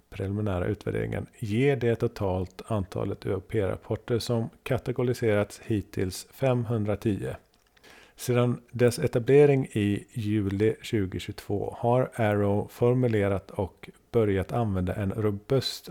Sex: male